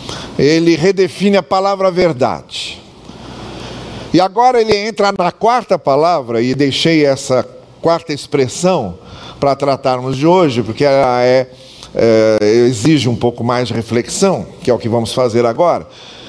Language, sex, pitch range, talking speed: Portuguese, male, 130-190 Hz, 135 wpm